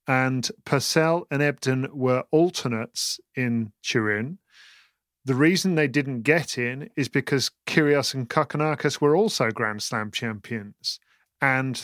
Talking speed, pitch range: 125 wpm, 120-145 Hz